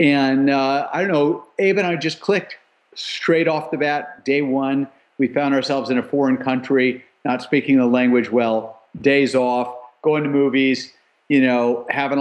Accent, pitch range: American, 120-145 Hz